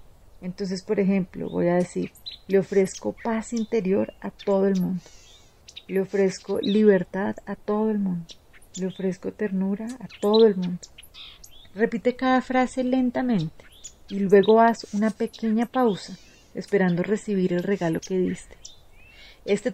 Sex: female